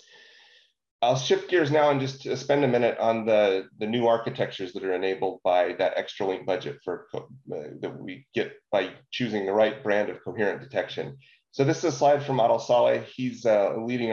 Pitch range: 105-125 Hz